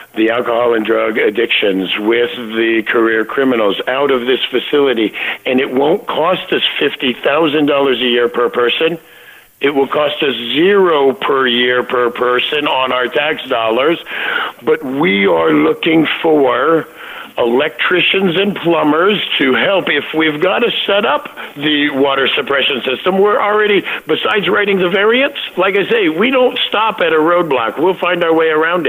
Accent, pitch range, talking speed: American, 120-195 Hz, 160 wpm